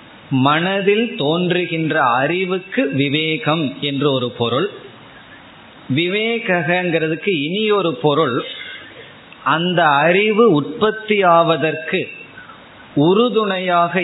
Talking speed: 65 wpm